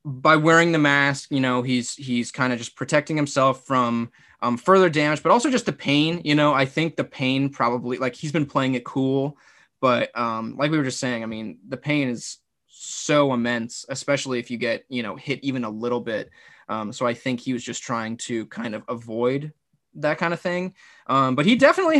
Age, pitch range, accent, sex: 20-39, 125-155 Hz, American, male